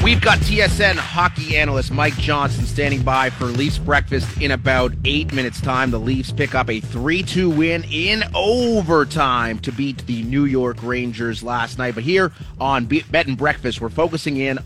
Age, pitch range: 30-49, 115-150 Hz